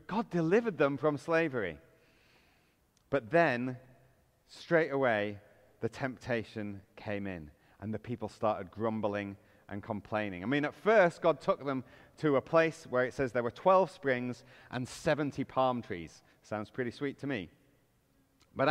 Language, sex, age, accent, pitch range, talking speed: English, male, 30-49, British, 110-160 Hz, 150 wpm